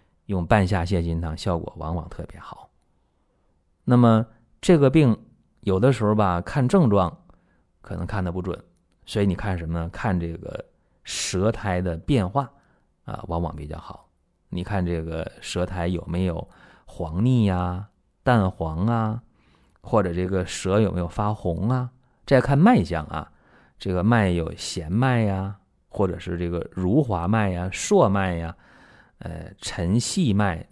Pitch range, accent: 85-110 Hz, native